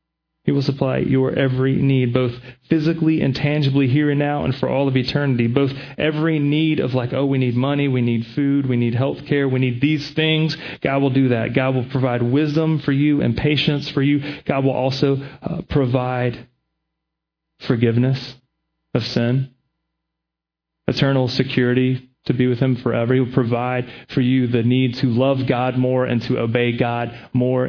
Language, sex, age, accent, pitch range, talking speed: English, male, 30-49, American, 125-155 Hz, 180 wpm